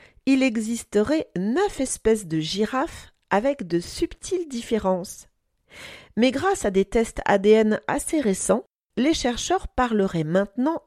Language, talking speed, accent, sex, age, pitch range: French, 120 wpm, French, female, 40-59, 195-275 Hz